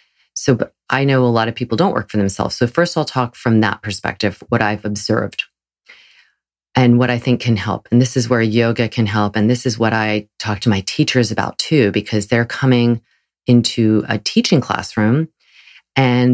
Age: 30-49